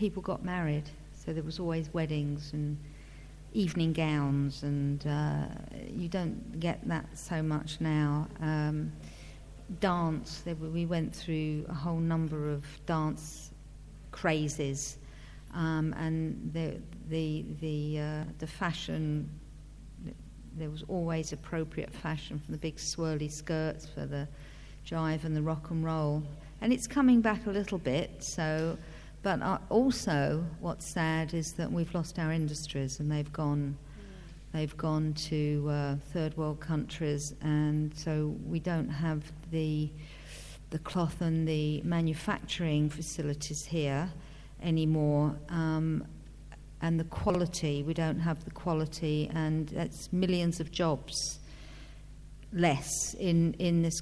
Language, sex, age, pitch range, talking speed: English, female, 50-69, 150-165 Hz, 130 wpm